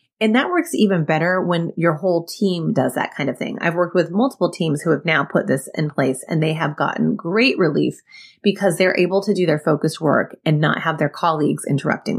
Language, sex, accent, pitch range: English, female, American, 160-205 Hz